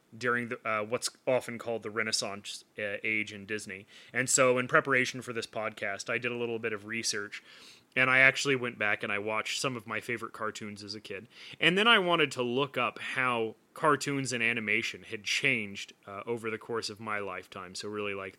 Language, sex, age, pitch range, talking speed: English, male, 30-49, 110-135 Hz, 210 wpm